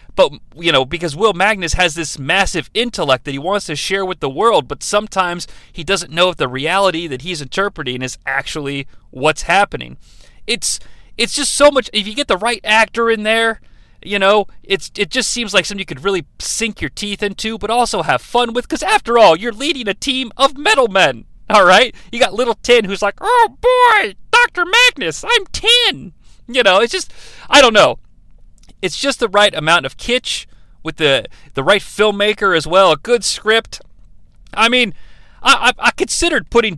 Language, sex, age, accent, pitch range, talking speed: English, male, 40-59, American, 165-240 Hz, 195 wpm